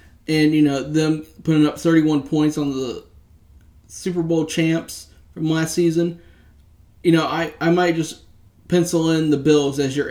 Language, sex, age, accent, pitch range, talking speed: English, male, 30-49, American, 140-160 Hz, 165 wpm